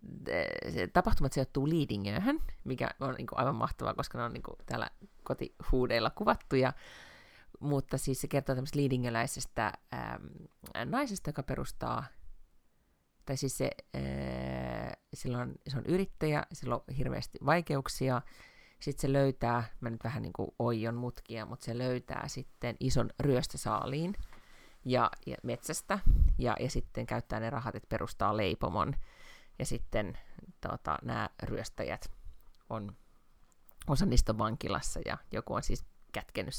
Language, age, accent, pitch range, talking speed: Finnish, 30-49, native, 115-145 Hz, 135 wpm